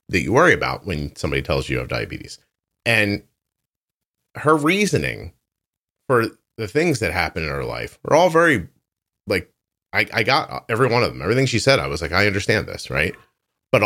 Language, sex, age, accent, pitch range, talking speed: English, male, 40-59, American, 85-115 Hz, 190 wpm